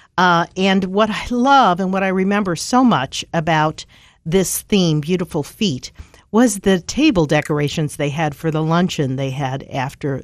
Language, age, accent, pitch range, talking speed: English, 50-69, American, 145-185 Hz, 160 wpm